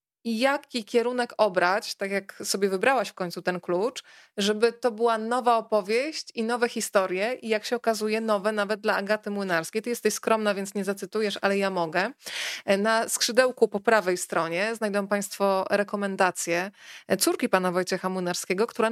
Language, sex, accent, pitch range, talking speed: Polish, female, native, 195-230 Hz, 160 wpm